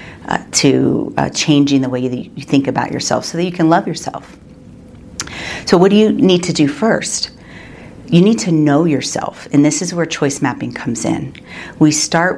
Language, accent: English, American